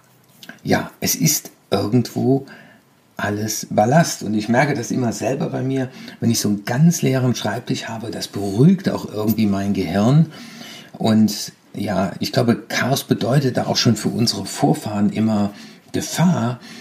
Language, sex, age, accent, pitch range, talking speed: German, male, 50-69, German, 105-135 Hz, 150 wpm